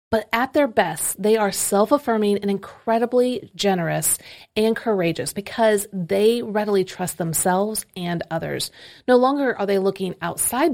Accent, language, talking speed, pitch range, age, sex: American, English, 140 wpm, 175-220 Hz, 30-49, female